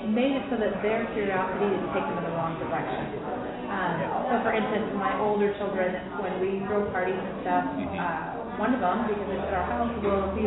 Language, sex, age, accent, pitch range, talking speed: English, female, 30-49, American, 185-230 Hz, 205 wpm